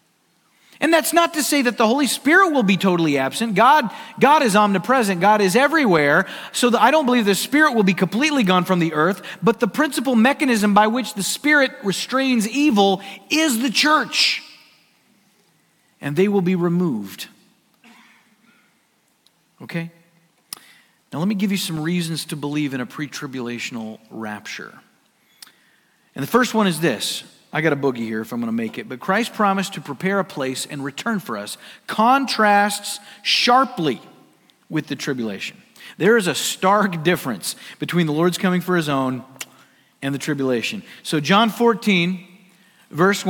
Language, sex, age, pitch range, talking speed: English, male, 40-59, 165-235 Hz, 160 wpm